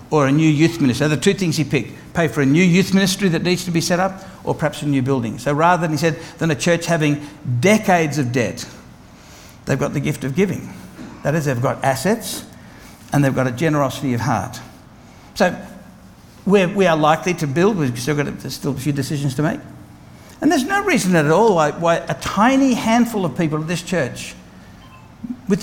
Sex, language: male, English